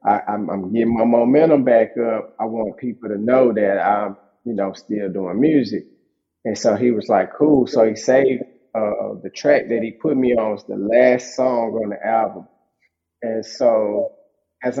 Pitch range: 110-125 Hz